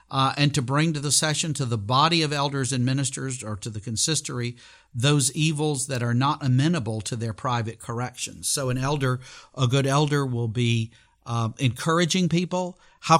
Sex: male